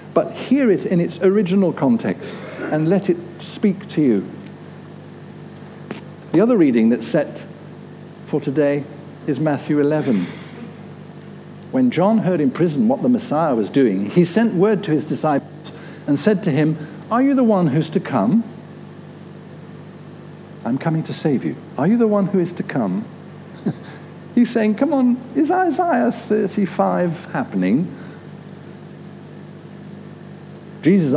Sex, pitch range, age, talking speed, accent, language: male, 150-195 Hz, 60-79, 140 wpm, British, English